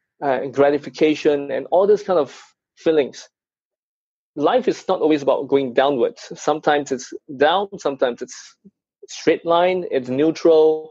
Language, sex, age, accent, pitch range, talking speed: English, male, 20-39, Malaysian, 135-180 Hz, 130 wpm